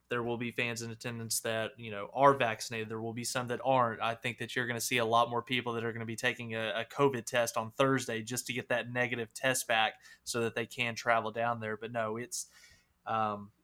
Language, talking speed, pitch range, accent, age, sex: English, 255 wpm, 115-125 Hz, American, 20-39, male